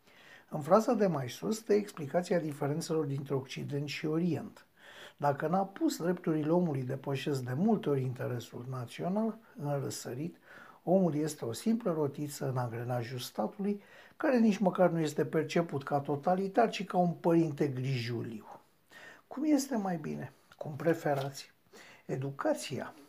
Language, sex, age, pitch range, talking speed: Romanian, male, 60-79, 135-180 Hz, 140 wpm